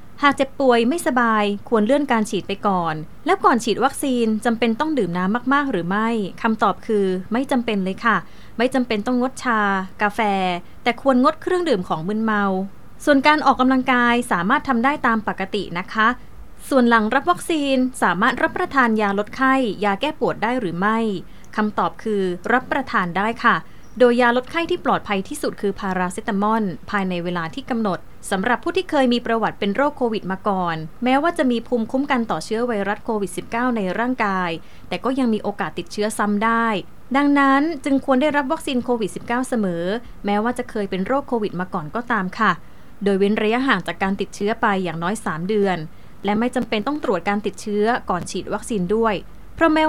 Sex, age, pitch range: female, 20-39, 200-255 Hz